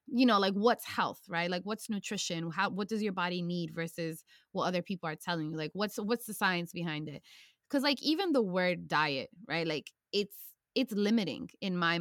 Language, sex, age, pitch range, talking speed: English, female, 20-39, 175-230 Hz, 210 wpm